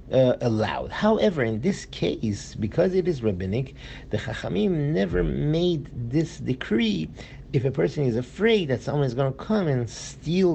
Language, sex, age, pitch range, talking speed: English, male, 50-69, 115-150 Hz, 165 wpm